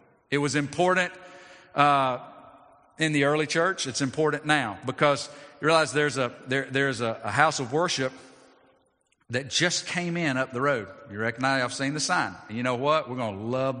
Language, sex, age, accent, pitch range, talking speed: English, male, 50-69, American, 105-150 Hz, 190 wpm